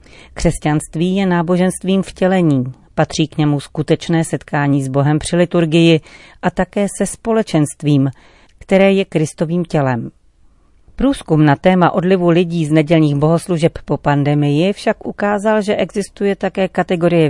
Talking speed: 130 wpm